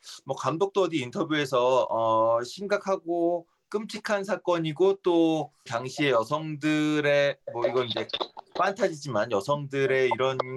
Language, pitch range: Korean, 130-195 Hz